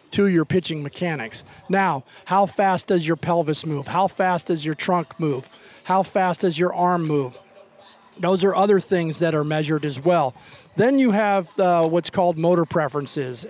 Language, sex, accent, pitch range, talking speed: English, male, American, 155-180 Hz, 175 wpm